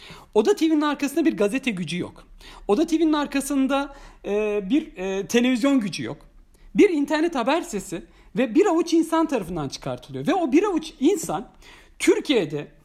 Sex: male